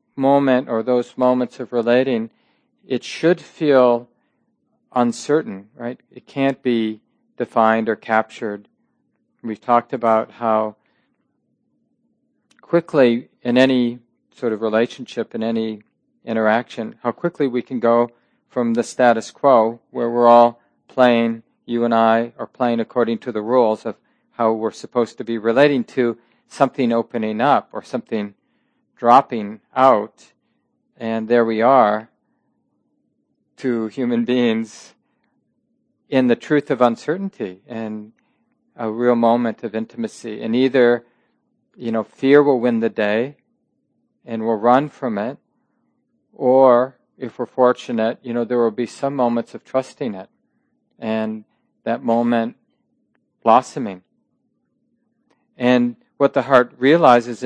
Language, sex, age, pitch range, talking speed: English, male, 40-59, 115-135 Hz, 125 wpm